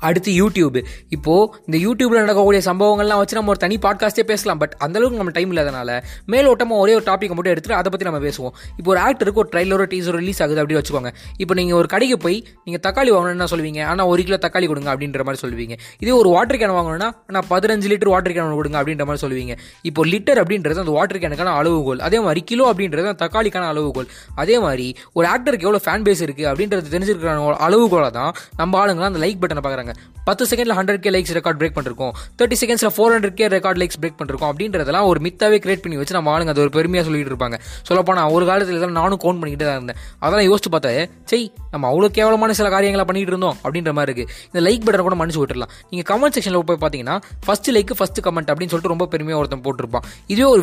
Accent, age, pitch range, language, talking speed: native, 20-39, 150-205 Hz, Tamil, 125 wpm